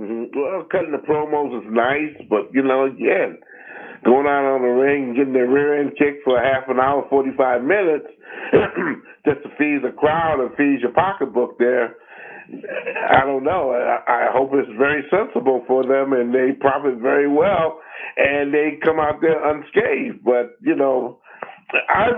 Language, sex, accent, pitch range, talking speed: English, male, American, 130-155 Hz, 175 wpm